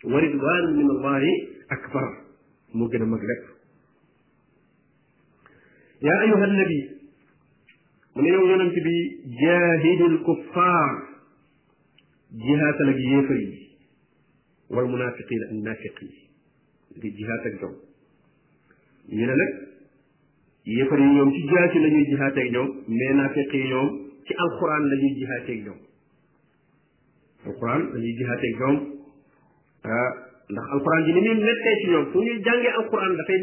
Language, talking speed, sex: French, 45 wpm, male